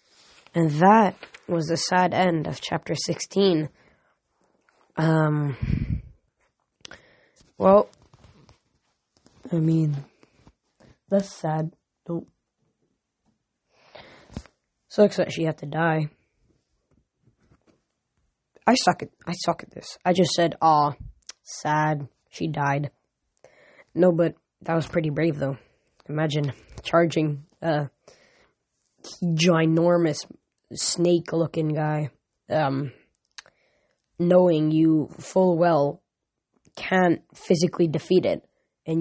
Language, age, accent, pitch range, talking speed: English, 10-29, American, 150-175 Hz, 90 wpm